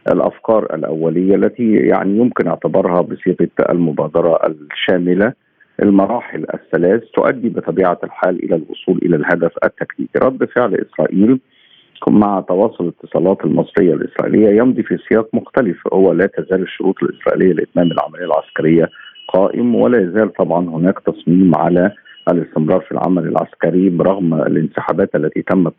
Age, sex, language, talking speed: 50-69, male, Arabic, 125 wpm